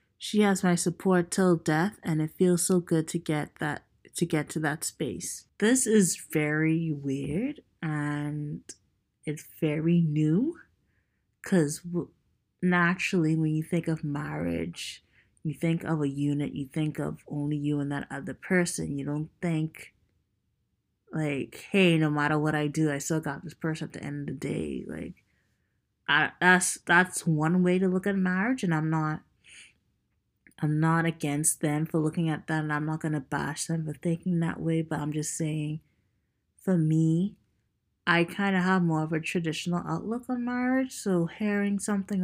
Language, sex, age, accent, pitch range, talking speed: English, female, 20-39, American, 150-185 Hz, 170 wpm